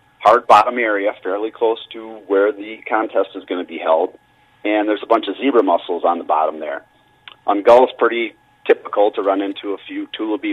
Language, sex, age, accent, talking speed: English, male, 40-59, American, 205 wpm